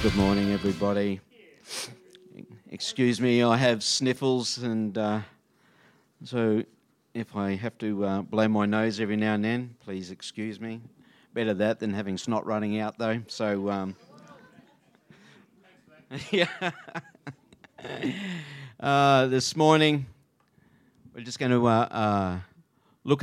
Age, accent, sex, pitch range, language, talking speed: 50-69, Australian, male, 100-125 Hz, English, 120 wpm